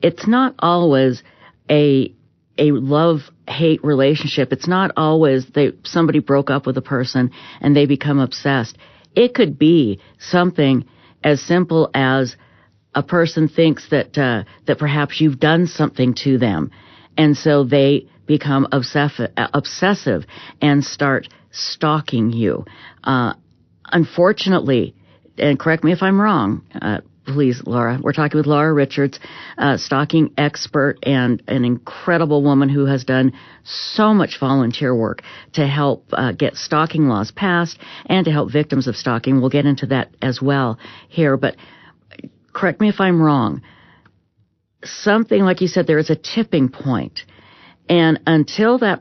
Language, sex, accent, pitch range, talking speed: English, female, American, 130-160 Hz, 145 wpm